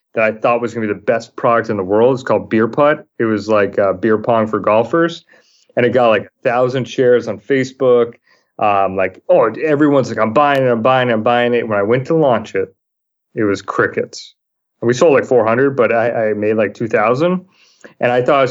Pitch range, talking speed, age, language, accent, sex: 105-125 Hz, 235 wpm, 30-49, English, American, male